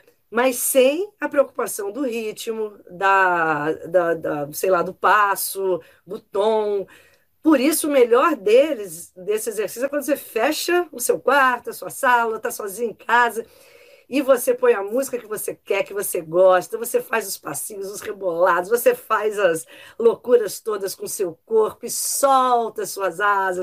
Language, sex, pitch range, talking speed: Portuguese, female, 185-305 Hz, 170 wpm